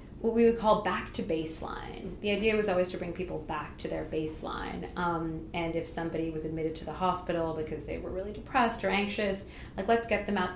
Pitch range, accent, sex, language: 165-215 Hz, American, female, English